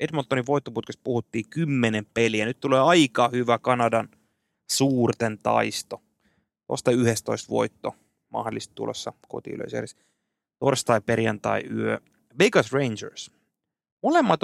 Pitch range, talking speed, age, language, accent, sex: 110-150 Hz, 100 wpm, 30-49, Finnish, native, male